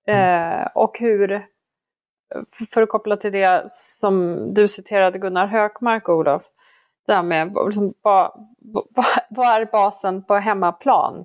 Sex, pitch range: female, 180-220 Hz